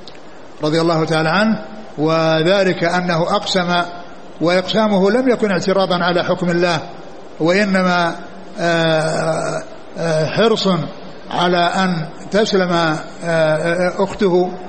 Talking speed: 80 wpm